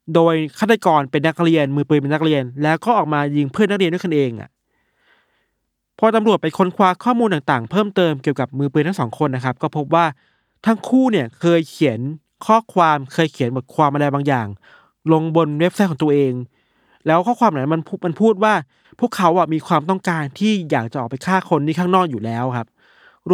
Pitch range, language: 145-190 Hz, Thai